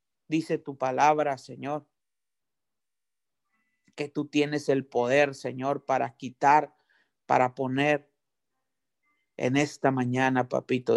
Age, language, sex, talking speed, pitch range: 50-69, Spanish, male, 100 wpm, 145-175 Hz